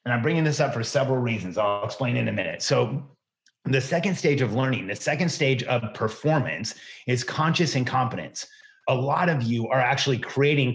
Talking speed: 190 wpm